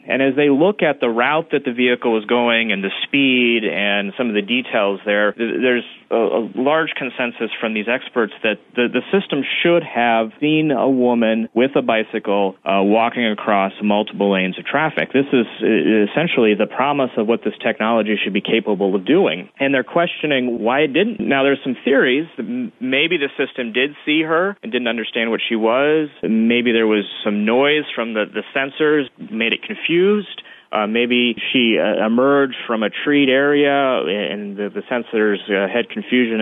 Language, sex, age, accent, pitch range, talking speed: English, male, 30-49, American, 110-140 Hz, 180 wpm